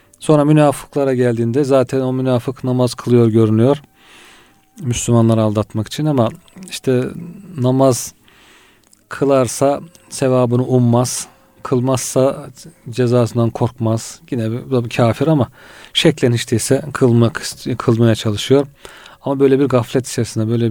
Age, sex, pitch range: 40-59, male, 115-135 Hz